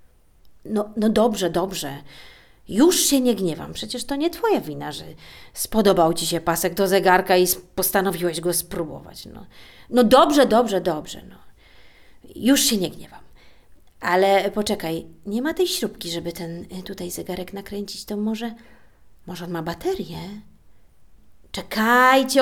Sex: female